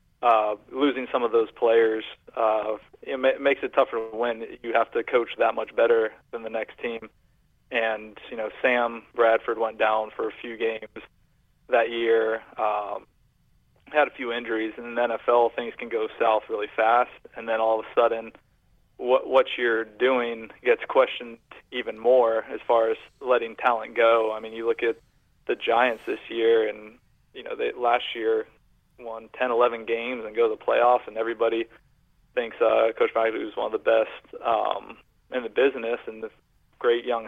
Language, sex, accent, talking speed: English, male, American, 180 wpm